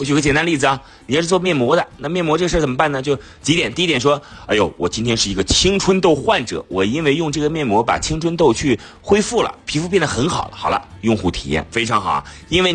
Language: Chinese